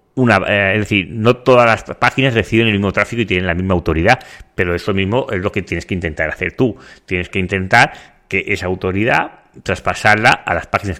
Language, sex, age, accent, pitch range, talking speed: Spanish, male, 30-49, Spanish, 95-110 Hz, 200 wpm